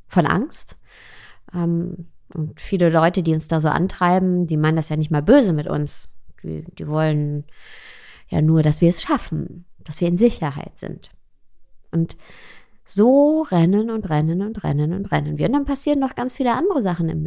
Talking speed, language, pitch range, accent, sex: 180 wpm, German, 155-215 Hz, German, female